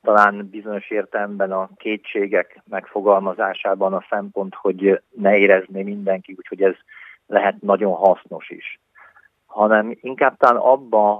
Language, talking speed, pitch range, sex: Hungarian, 120 wpm, 95-105 Hz, male